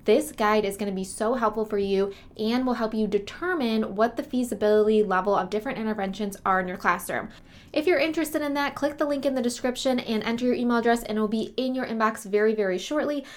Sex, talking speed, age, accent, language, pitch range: female, 225 wpm, 20-39, American, English, 200-240 Hz